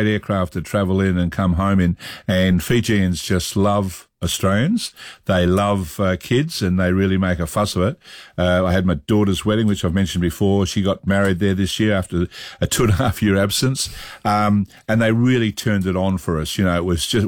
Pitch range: 95-110 Hz